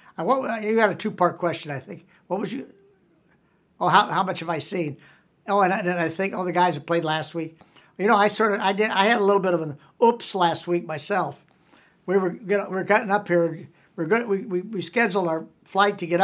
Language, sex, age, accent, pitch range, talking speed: English, male, 60-79, American, 165-200 Hz, 250 wpm